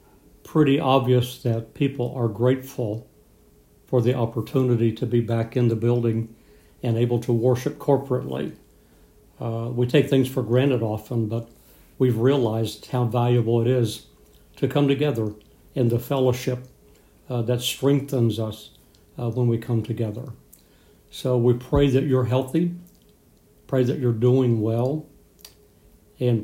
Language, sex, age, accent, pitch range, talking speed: English, male, 60-79, American, 115-135 Hz, 140 wpm